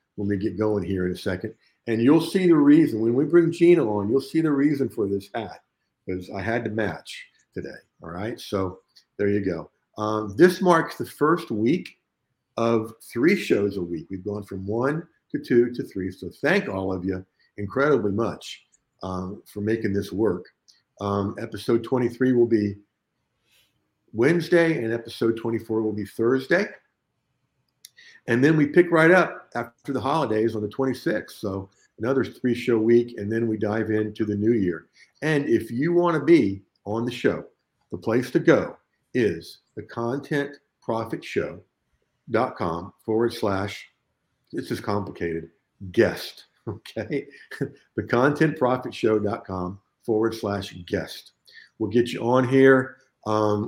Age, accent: 50-69, American